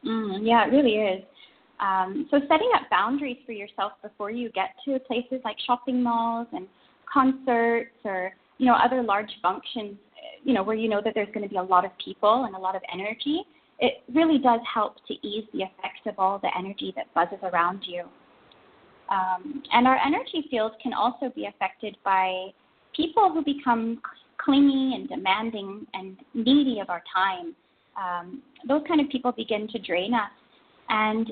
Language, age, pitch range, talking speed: English, 20-39, 215-280 Hz, 180 wpm